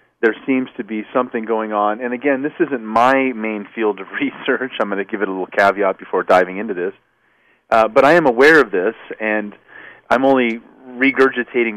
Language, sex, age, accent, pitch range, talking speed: English, male, 40-59, American, 105-130 Hz, 200 wpm